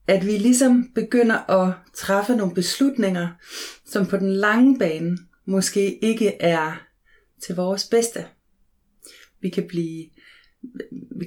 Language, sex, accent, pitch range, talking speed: Danish, female, native, 170-225 Hz, 120 wpm